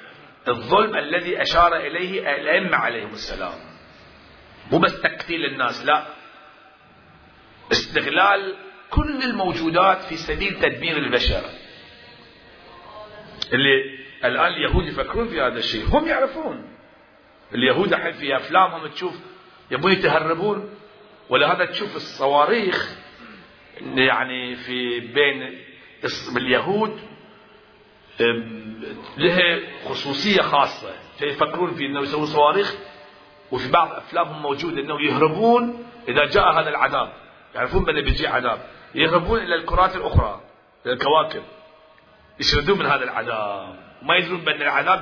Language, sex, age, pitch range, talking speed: Arabic, male, 50-69, 145-210 Hz, 105 wpm